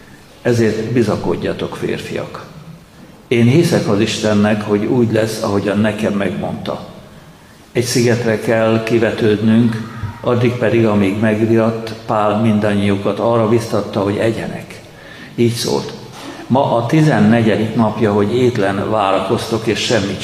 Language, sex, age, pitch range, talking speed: Hungarian, male, 60-79, 105-115 Hz, 115 wpm